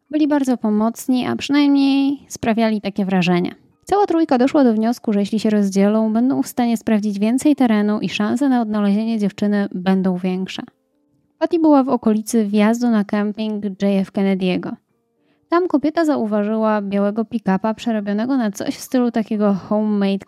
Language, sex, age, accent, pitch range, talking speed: Polish, female, 20-39, native, 195-255 Hz, 150 wpm